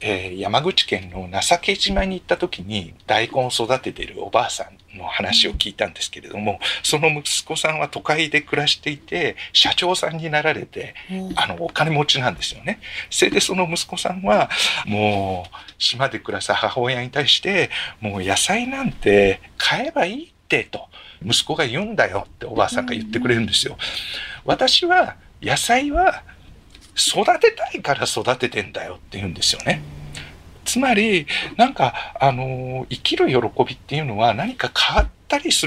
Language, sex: Japanese, male